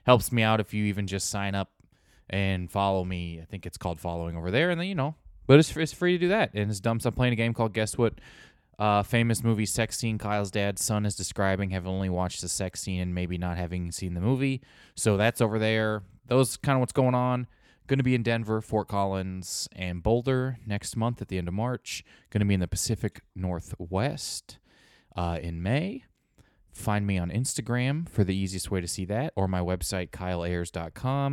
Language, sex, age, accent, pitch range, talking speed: English, male, 20-39, American, 90-115 Hz, 220 wpm